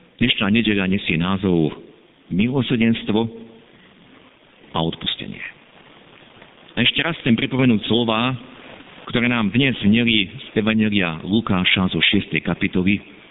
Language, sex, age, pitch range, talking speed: Slovak, male, 50-69, 105-165 Hz, 105 wpm